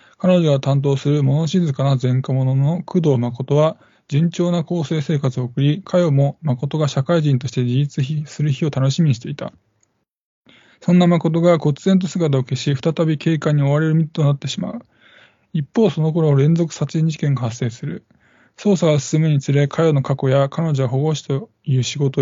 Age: 20-39